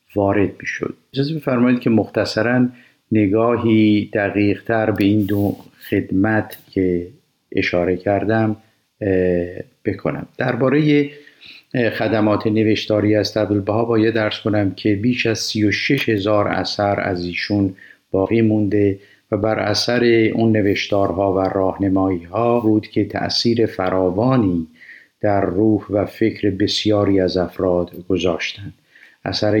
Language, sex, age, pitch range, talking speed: Persian, male, 50-69, 95-110 Hz, 115 wpm